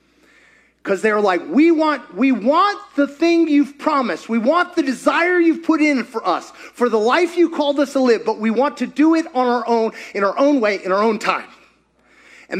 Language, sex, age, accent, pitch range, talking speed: English, male, 30-49, American, 225-300 Hz, 225 wpm